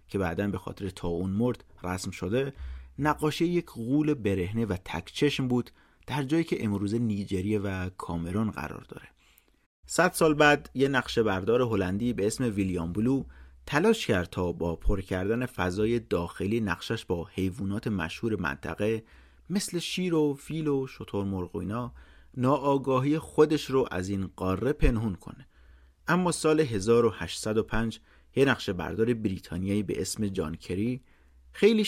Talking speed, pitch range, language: 140 wpm, 90-140 Hz, Persian